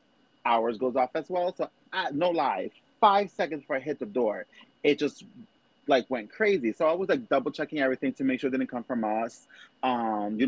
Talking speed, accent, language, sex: 210 wpm, American, English, male